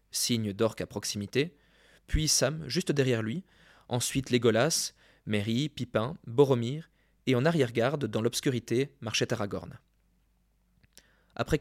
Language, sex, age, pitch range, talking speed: French, male, 20-39, 115-140 Hz, 120 wpm